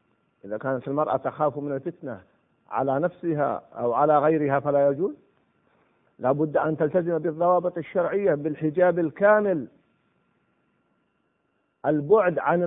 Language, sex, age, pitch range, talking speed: Arabic, male, 50-69, 155-240 Hz, 110 wpm